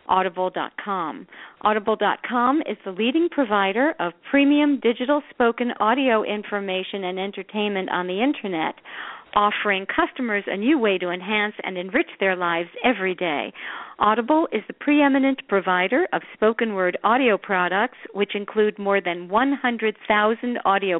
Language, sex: English, female